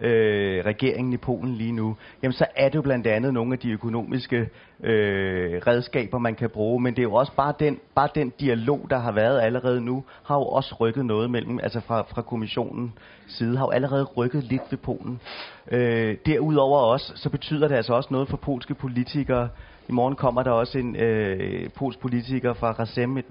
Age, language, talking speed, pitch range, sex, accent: 30-49, English, 200 wpm, 115-135 Hz, male, Danish